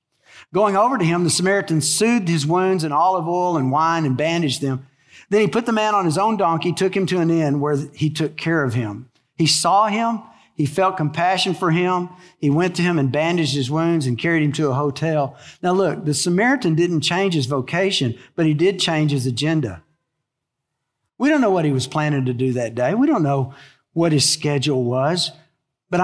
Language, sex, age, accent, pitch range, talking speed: English, male, 50-69, American, 150-210 Hz, 210 wpm